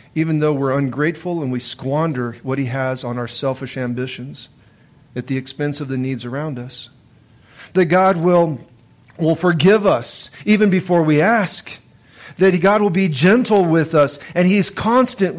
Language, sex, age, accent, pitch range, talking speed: English, male, 40-59, American, 135-195 Hz, 165 wpm